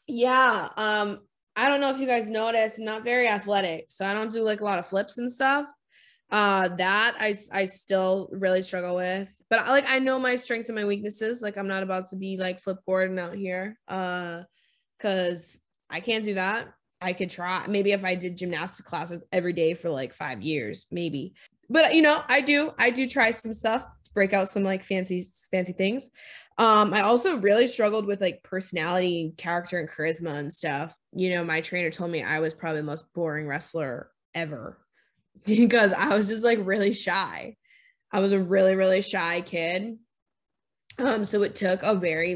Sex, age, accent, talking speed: female, 20-39, American, 195 wpm